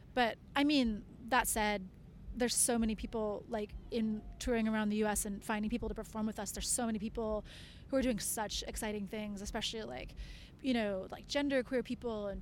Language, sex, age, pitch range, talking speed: English, female, 30-49, 210-240 Hz, 195 wpm